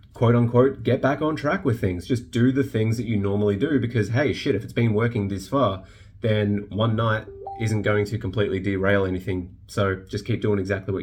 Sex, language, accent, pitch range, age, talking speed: male, English, Australian, 95-110 Hz, 20-39, 210 wpm